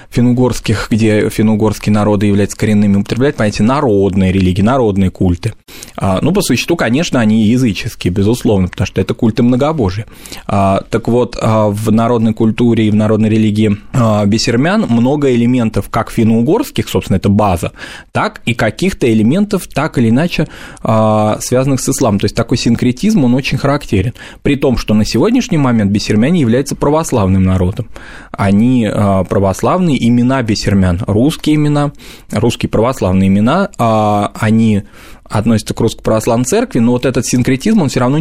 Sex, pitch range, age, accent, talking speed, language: male, 105-130 Hz, 20-39, native, 140 wpm, Russian